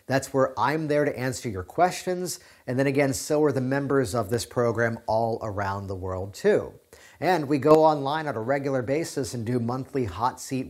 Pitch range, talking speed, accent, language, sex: 115-150 Hz, 200 wpm, American, English, male